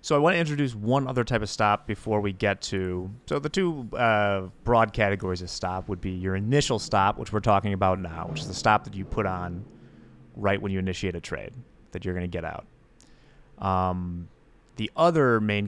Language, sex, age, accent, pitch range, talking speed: English, male, 30-49, American, 95-120 Hz, 215 wpm